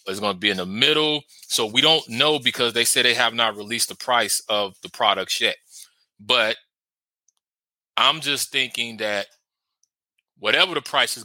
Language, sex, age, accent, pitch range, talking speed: English, male, 30-49, American, 125-160 Hz, 175 wpm